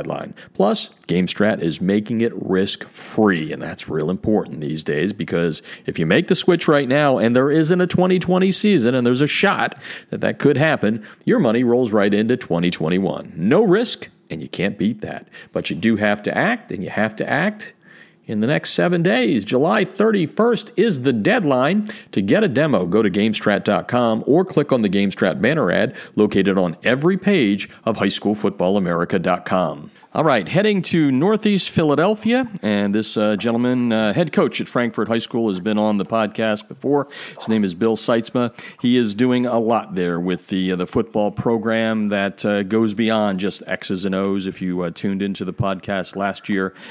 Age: 50-69